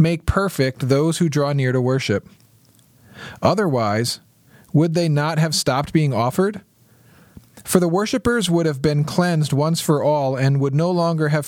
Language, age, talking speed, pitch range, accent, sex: English, 40-59, 160 wpm, 125-160 Hz, American, male